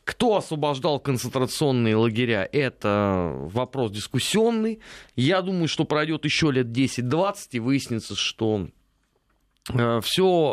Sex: male